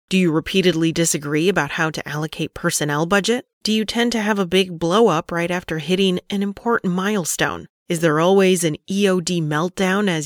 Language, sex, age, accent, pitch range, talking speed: English, female, 30-49, American, 165-215 Hz, 180 wpm